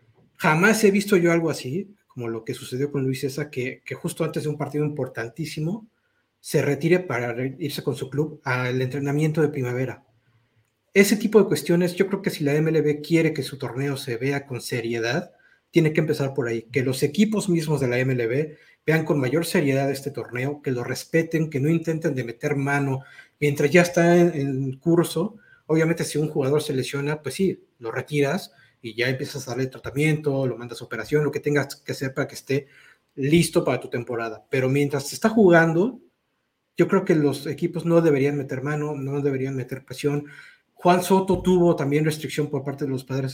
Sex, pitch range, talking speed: male, 130-165 Hz, 195 wpm